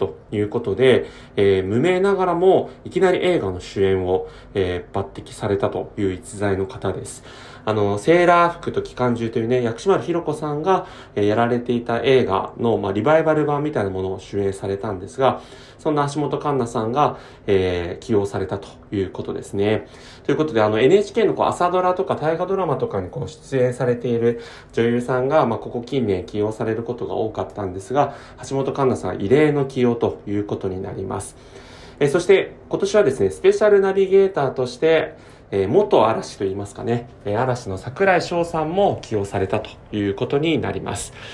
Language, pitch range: Japanese, 100-145 Hz